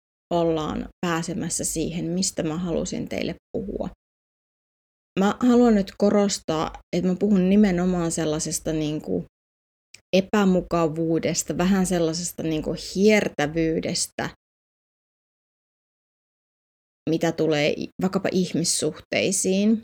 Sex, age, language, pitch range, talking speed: female, 20-39, Finnish, 160-210 Hz, 80 wpm